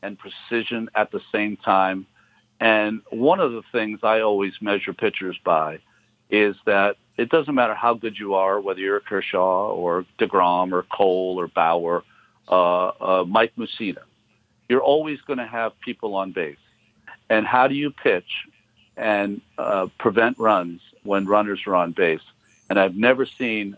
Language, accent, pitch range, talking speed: English, American, 95-115 Hz, 160 wpm